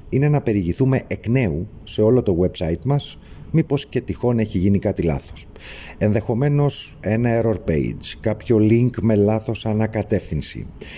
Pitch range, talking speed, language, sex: 90-120 Hz, 140 wpm, Greek, male